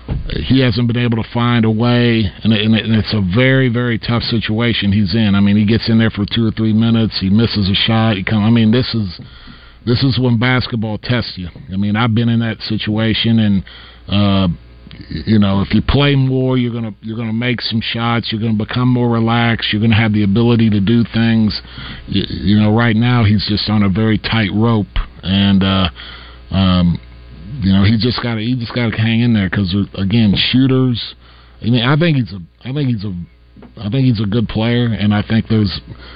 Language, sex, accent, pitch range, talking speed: English, male, American, 100-115 Hz, 210 wpm